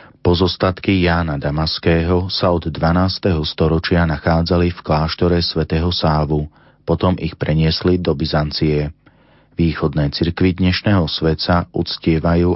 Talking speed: 105 wpm